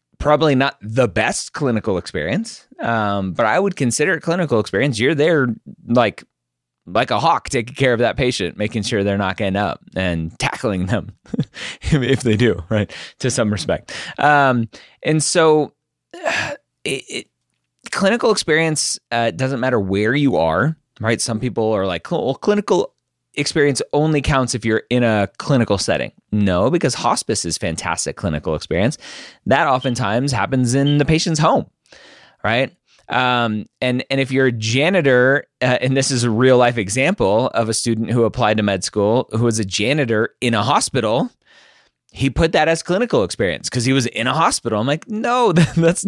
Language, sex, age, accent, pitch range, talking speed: English, male, 30-49, American, 110-145 Hz, 170 wpm